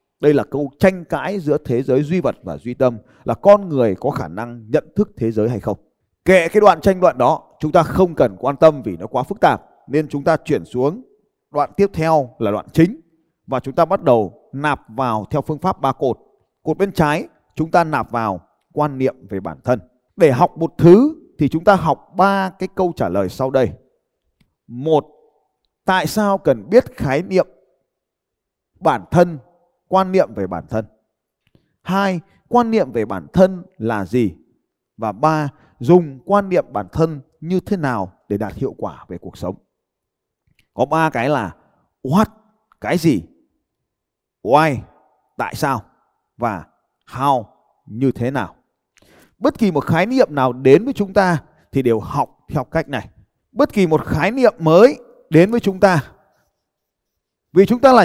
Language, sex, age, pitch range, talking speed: Vietnamese, male, 20-39, 130-185 Hz, 180 wpm